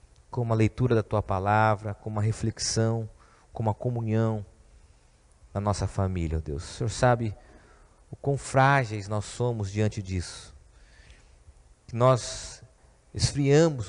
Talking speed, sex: 130 wpm, male